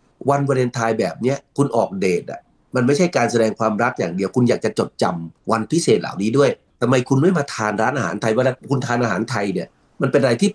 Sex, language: male, Thai